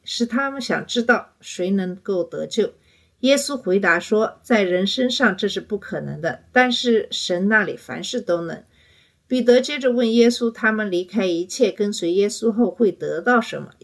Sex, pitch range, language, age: female, 180-230 Hz, Chinese, 50-69